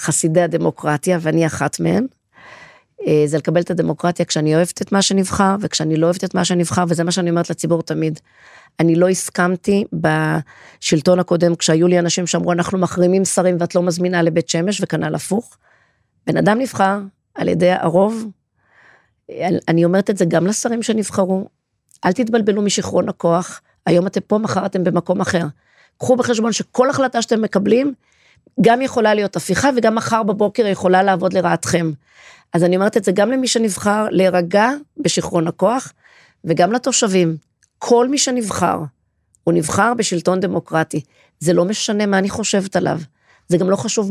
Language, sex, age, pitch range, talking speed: English, female, 40-59, 170-210 Hz, 135 wpm